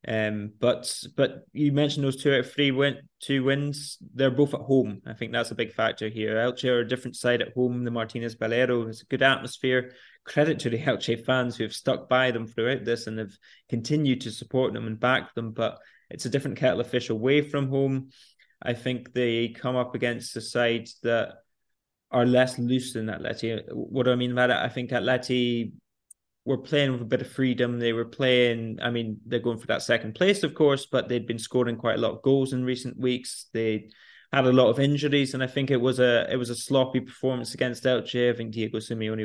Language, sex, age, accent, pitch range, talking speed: English, male, 20-39, British, 115-130 Hz, 225 wpm